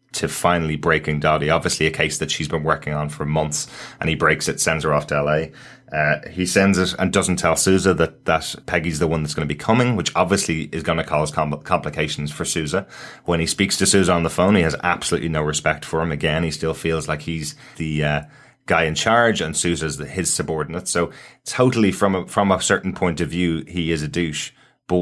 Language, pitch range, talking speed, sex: English, 75-90 Hz, 235 wpm, male